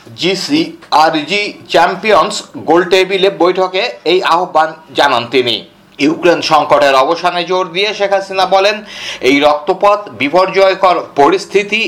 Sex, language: male, Bengali